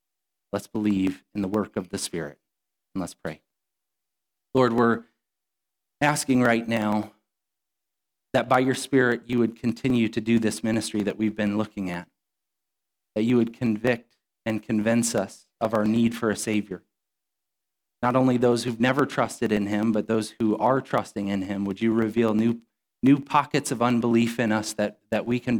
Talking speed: 175 wpm